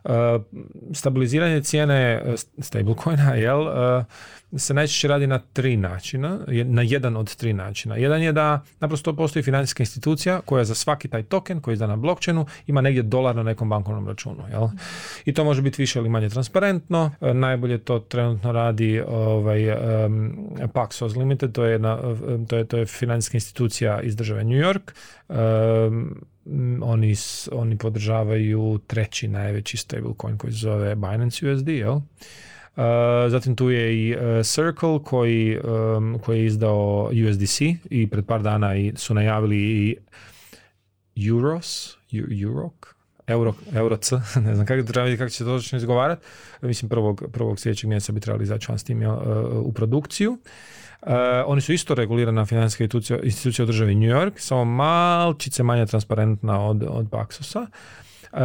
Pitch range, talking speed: 110-135 Hz, 140 wpm